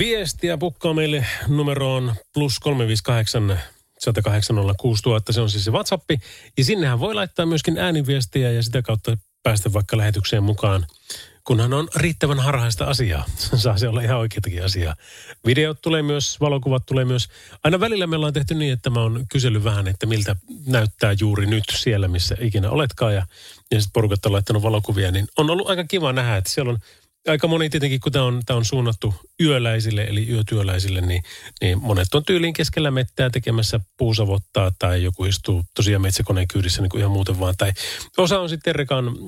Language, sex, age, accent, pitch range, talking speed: Finnish, male, 30-49, native, 100-145 Hz, 175 wpm